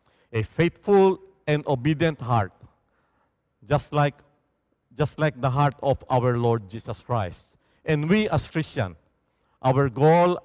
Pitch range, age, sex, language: 120-155 Hz, 50-69, male, English